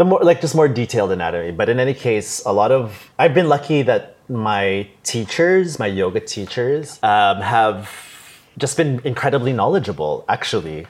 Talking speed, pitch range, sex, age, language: 160 wpm, 100-125 Hz, male, 30-49, Czech